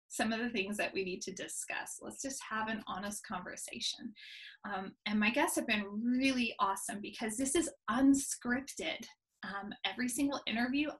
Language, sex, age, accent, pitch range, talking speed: English, female, 20-39, American, 210-275 Hz, 170 wpm